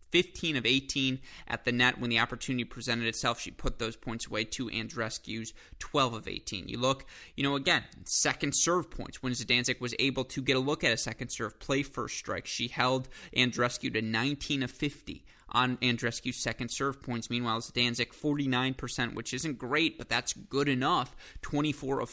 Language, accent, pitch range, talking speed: English, American, 120-145 Hz, 185 wpm